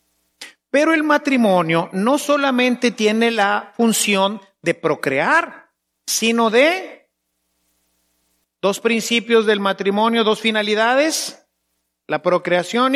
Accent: Mexican